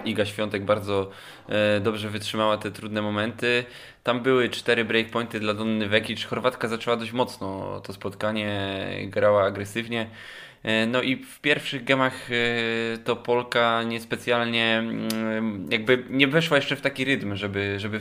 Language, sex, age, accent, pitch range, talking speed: Polish, male, 20-39, native, 110-135 Hz, 135 wpm